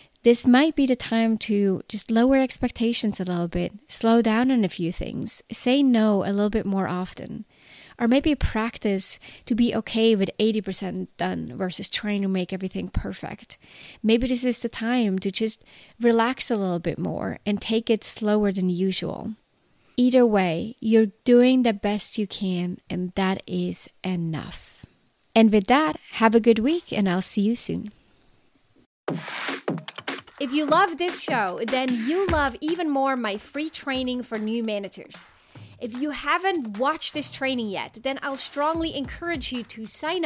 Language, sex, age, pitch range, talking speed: English, female, 20-39, 210-270 Hz, 165 wpm